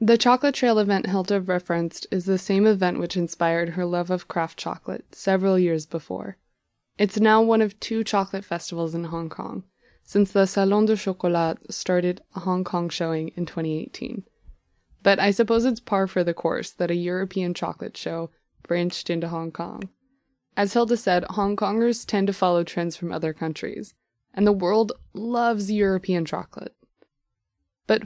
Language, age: English, 20-39